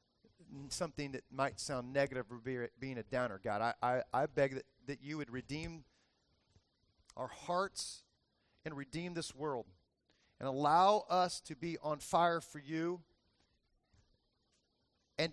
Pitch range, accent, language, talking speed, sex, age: 125-170 Hz, American, English, 135 wpm, male, 40-59